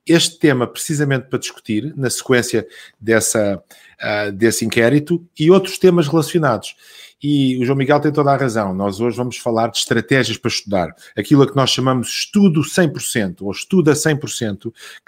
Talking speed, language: 155 wpm, Portuguese